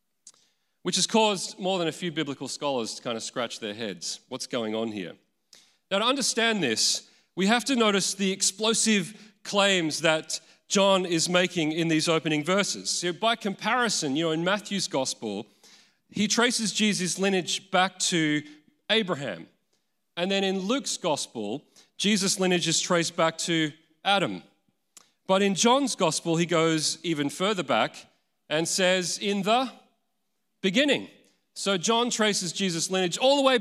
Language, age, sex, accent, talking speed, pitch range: English, 40-59, male, Australian, 155 wpm, 160-210 Hz